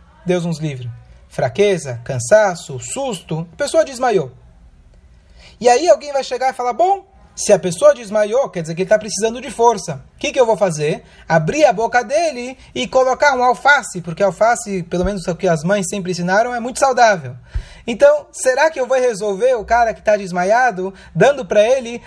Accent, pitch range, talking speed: Brazilian, 165-230 Hz, 190 wpm